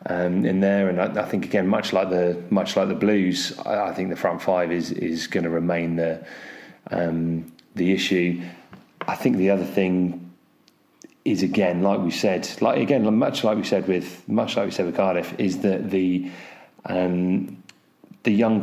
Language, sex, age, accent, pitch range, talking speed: English, male, 30-49, British, 80-90 Hz, 190 wpm